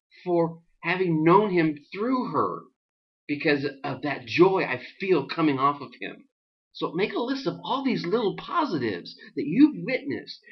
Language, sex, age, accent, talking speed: English, male, 40-59, American, 160 wpm